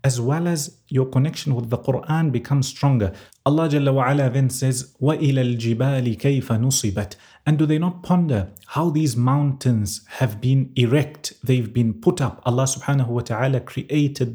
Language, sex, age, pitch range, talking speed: English, male, 30-49, 130-155 Hz, 145 wpm